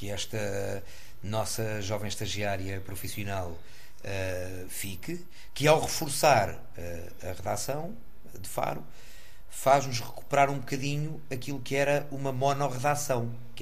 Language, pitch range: Portuguese, 110-135 Hz